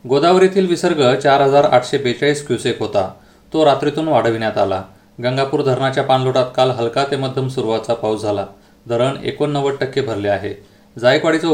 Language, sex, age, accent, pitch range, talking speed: Marathi, male, 30-49, native, 120-145 Hz, 130 wpm